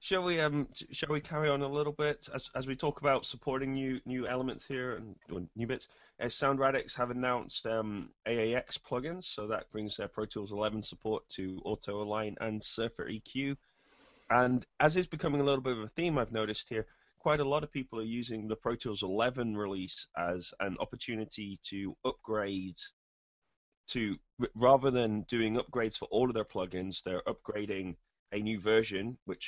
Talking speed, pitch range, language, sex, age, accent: 185 wpm, 90-125 Hz, English, male, 20-39, British